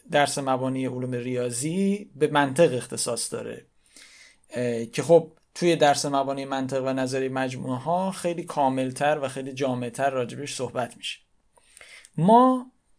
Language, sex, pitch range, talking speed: Persian, male, 135-165 Hz, 125 wpm